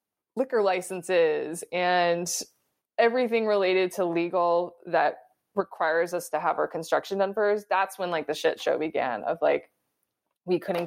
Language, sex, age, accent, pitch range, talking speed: English, female, 20-39, American, 175-250 Hz, 145 wpm